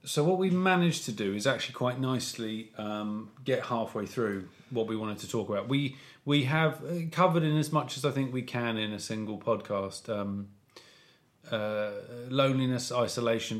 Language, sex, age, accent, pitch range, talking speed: English, male, 40-59, British, 105-130 Hz, 175 wpm